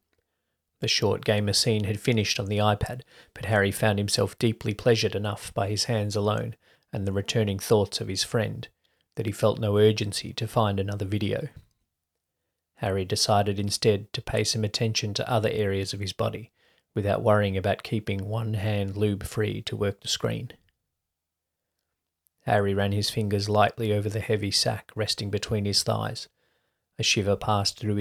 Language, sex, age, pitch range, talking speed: English, male, 30-49, 100-110 Hz, 165 wpm